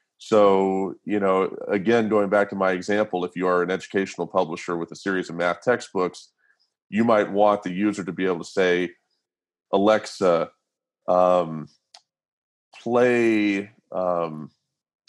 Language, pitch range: English, 95-115 Hz